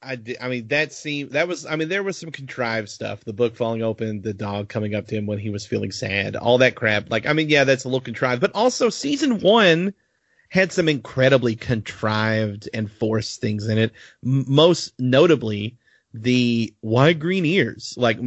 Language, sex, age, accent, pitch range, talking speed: English, male, 30-49, American, 115-145 Hz, 195 wpm